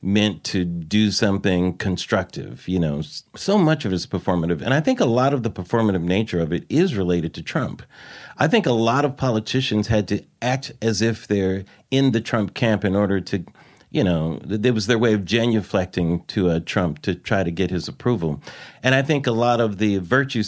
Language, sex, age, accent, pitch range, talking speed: English, male, 40-59, American, 95-125 Hz, 210 wpm